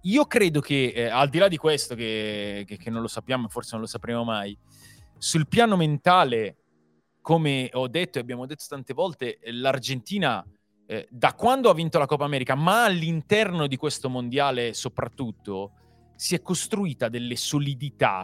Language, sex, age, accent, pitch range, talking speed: Italian, male, 30-49, native, 120-170 Hz, 170 wpm